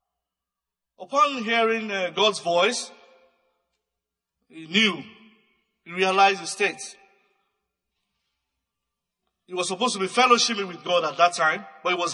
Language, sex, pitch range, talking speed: English, male, 175-245 Hz, 125 wpm